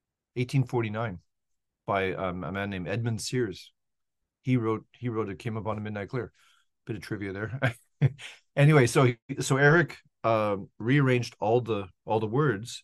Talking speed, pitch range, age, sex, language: 160 wpm, 100-130 Hz, 40-59, male, English